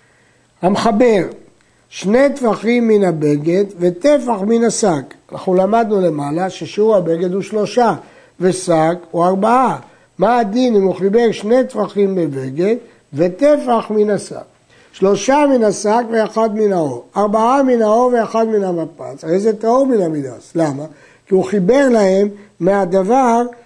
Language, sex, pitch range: Hebrew, male, 175-225 Hz